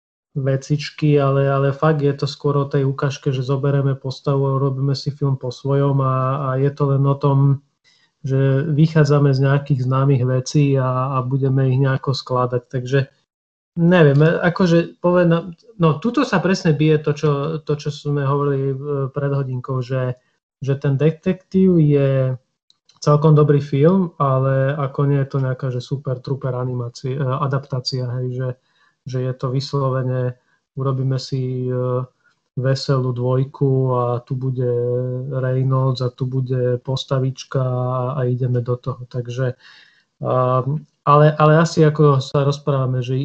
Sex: male